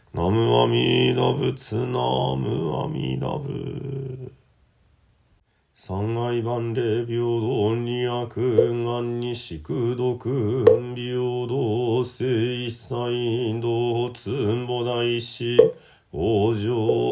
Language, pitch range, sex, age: Japanese, 115-125 Hz, male, 40-59